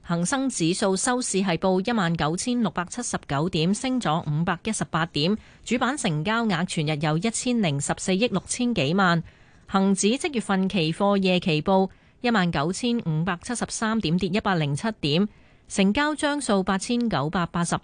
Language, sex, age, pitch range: Chinese, female, 30-49, 170-220 Hz